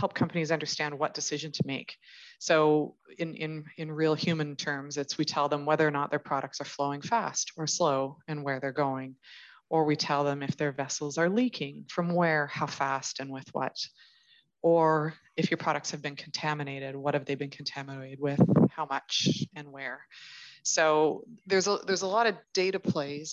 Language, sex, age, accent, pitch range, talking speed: English, female, 30-49, American, 145-170 Hz, 190 wpm